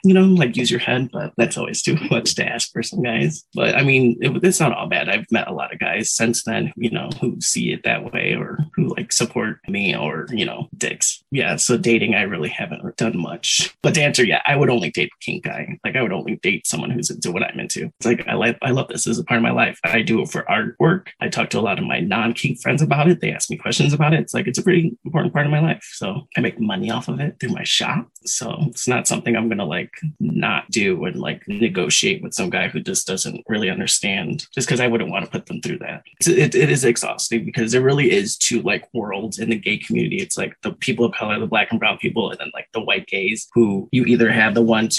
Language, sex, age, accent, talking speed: English, male, 20-39, American, 270 wpm